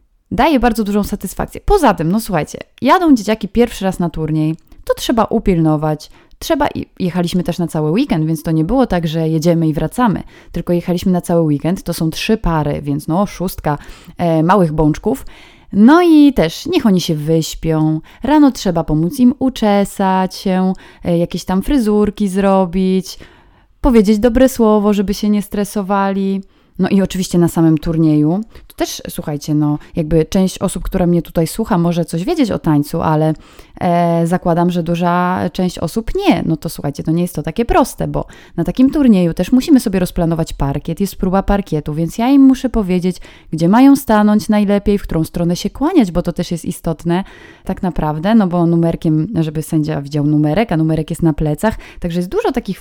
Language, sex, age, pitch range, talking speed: Polish, female, 20-39, 165-215 Hz, 180 wpm